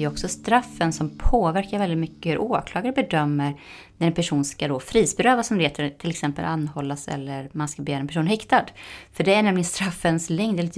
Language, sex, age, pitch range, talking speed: English, female, 20-39, 145-195 Hz, 205 wpm